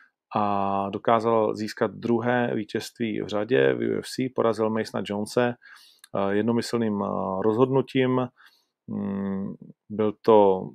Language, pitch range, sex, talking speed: Czech, 100-115 Hz, male, 90 wpm